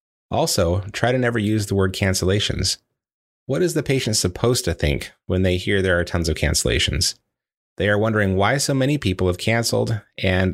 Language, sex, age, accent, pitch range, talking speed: English, male, 30-49, American, 90-115 Hz, 190 wpm